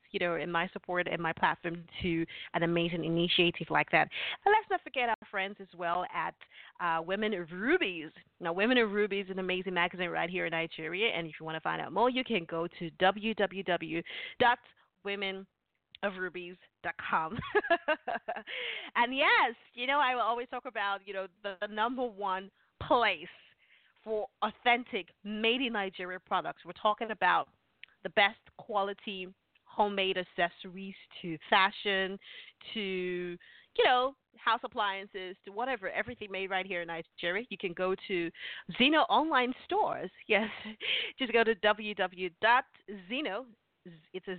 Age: 30-49